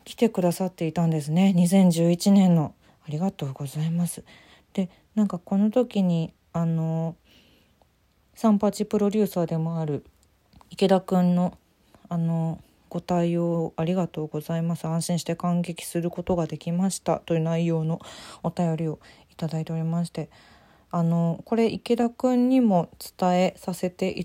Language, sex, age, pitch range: Japanese, female, 20-39, 165-210 Hz